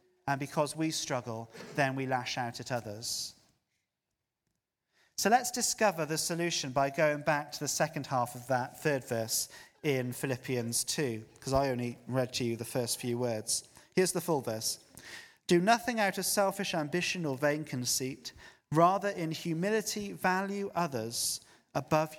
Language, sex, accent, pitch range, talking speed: English, male, British, 130-175 Hz, 155 wpm